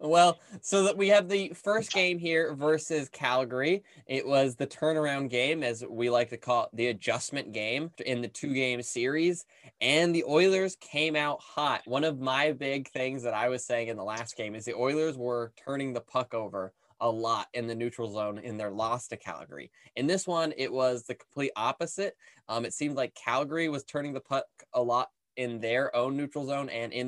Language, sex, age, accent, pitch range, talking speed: English, male, 10-29, American, 120-155 Hz, 205 wpm